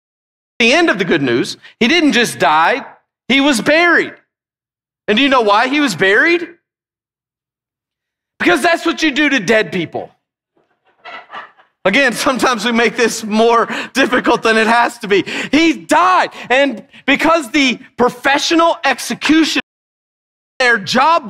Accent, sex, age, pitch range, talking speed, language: American, male, 40-59, 175-265 Hz, 145 wpm, English